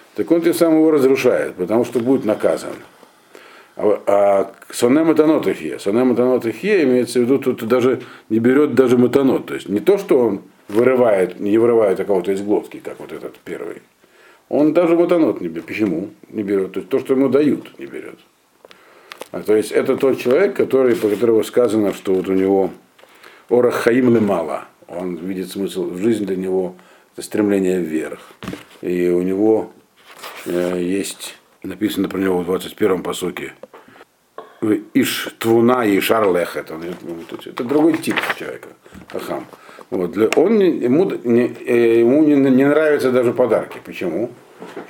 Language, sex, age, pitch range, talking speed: Russian, male, 50-69, 100-145 Hz, 150 wpm